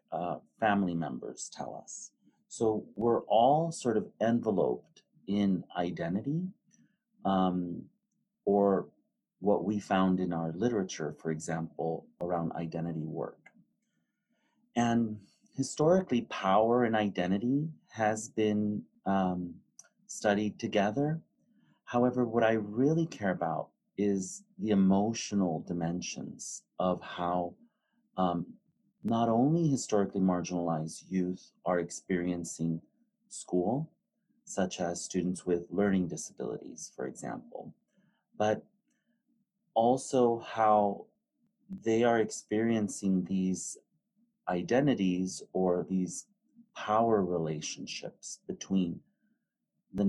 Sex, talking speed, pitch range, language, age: male, 95 wpm, 90-140 Hz, English, 30-49